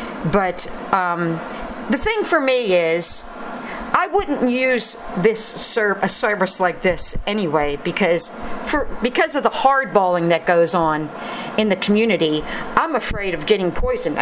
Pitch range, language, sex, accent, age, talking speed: 195-250 Hz, English, female, American, 50-69, 150 wpm